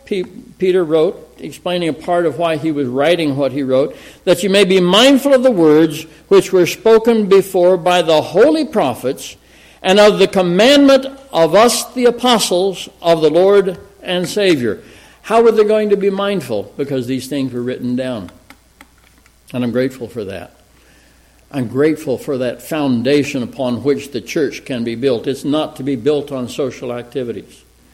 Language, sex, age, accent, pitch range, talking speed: English, male, 60-79, American, 130-195 Hz, 170 wpm